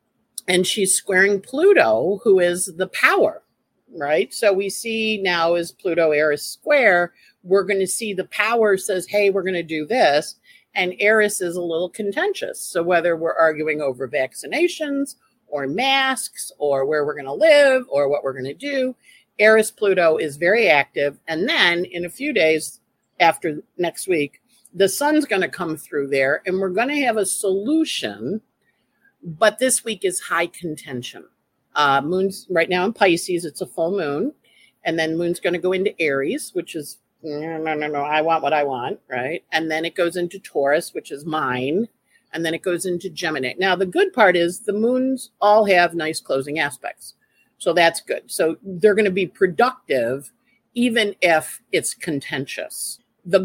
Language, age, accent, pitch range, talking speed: English, 50-69, American, 160-215 Hz, 180 wpm